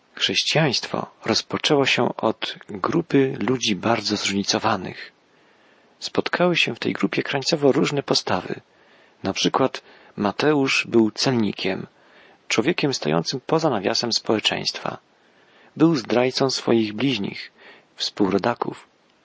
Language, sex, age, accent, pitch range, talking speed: Polish, male, 40-59, native, 110-145 Hz, 95 wpm